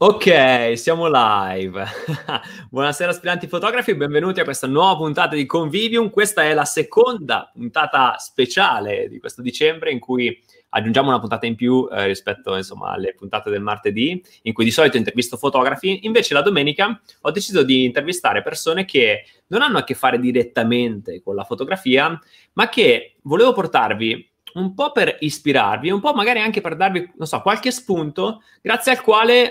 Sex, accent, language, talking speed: male, native, Italian, 165 wpm